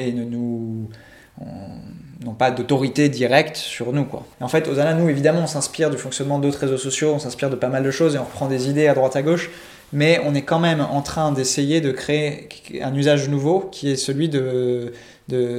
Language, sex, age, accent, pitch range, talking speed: French, male, 20-39, French, 125-150 Hz, 220 wpm